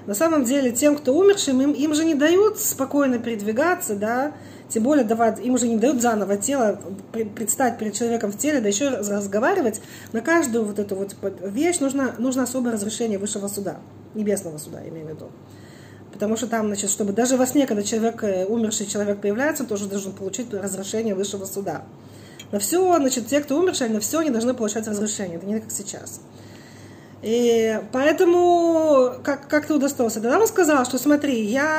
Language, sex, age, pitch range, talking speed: Russian, female, 20-39, 205-285 Hz, 185 wpm